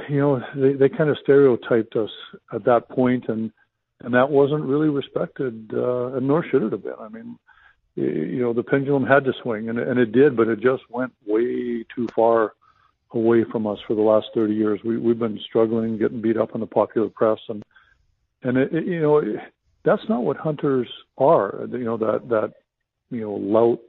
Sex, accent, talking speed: male, American, 205 wpm